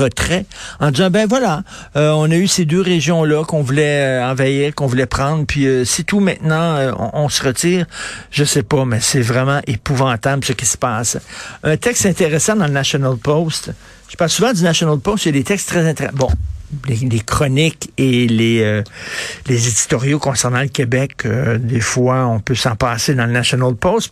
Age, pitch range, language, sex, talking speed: 60-79, 130-165 Hz, French, male, 210 wpm